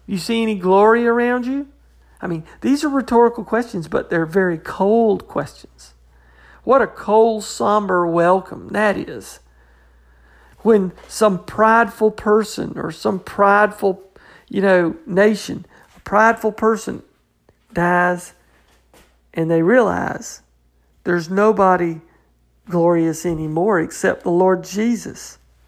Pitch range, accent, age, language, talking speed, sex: 150-215 Hz, American, 50-69, English, 115 wpm, male